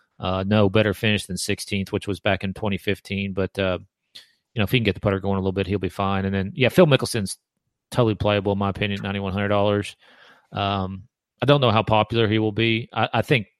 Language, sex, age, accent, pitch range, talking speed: English, male, 40-59, American, 95-110 Hz, 235 wpm